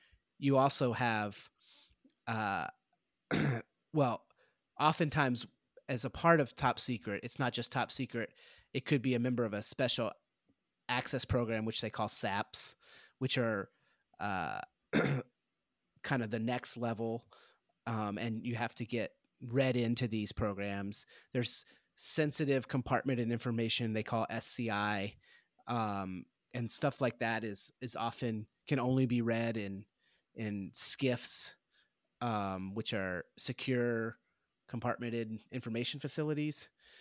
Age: 30-49